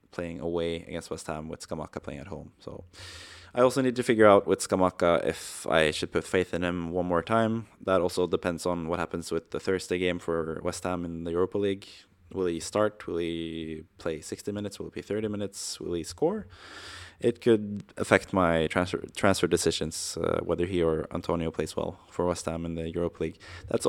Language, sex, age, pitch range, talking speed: English, male, 20-39, 85-100 Hz, 210 wpm